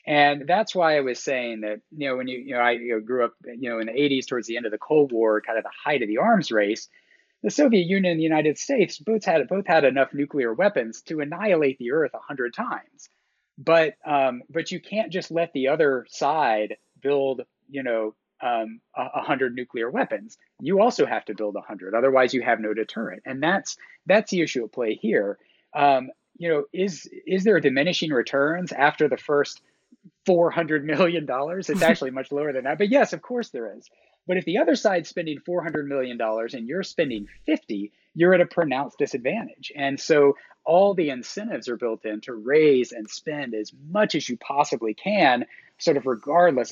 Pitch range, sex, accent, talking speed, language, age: 130-180 Hz, male, American, 205 wpm, English, 30-49